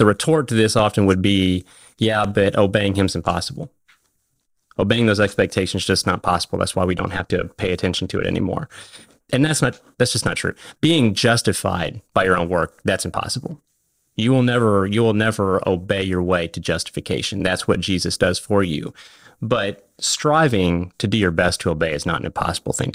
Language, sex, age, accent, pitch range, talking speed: English, male, 30-49, American, 95-115 Hz, 190 wpm